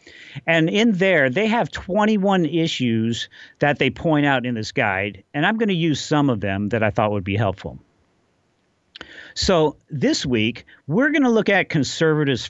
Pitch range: 125-175 Hz